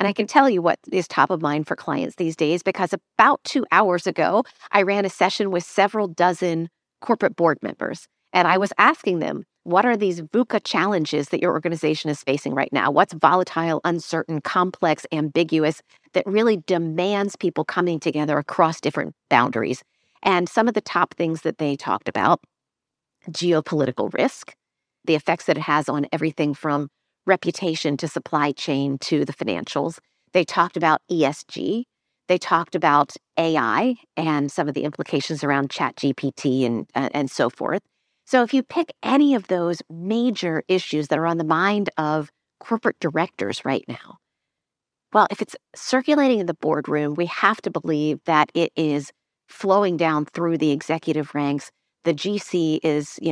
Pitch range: 150-185 Hz